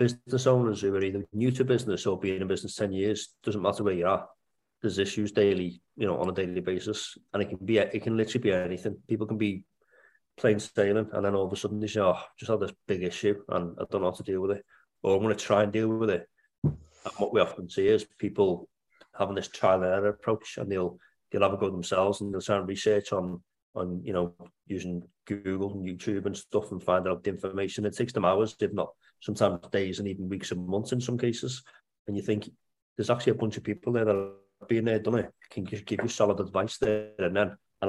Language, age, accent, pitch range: English, 30-49, British, 95-110 Hz